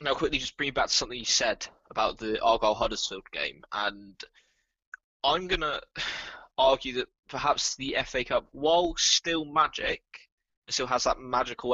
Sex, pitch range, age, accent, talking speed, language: male, 110-140 Hz, 10-29, British, 155 wpm, English